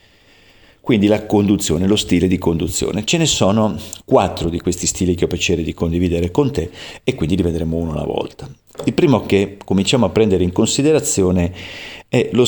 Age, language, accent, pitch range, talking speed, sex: 40-59, Italian, native, 90-110 Hz, 185 wpm, male